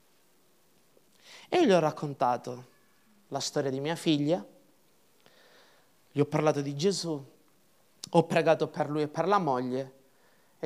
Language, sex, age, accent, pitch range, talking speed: Italian, male, 20-39, native, 140-195 Hz, 135 wpm